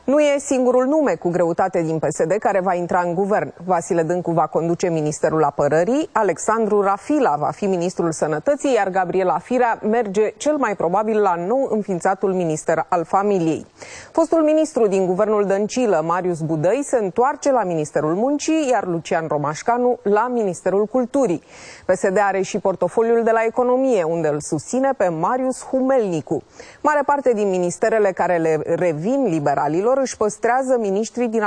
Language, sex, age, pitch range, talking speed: Romanian, female, 30-49, 180-255 Hz, 155 wpm